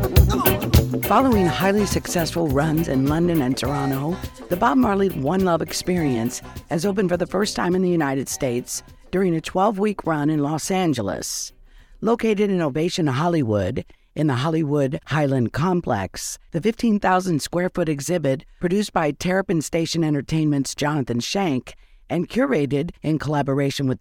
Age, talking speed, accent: 50-69, 145 wpm, American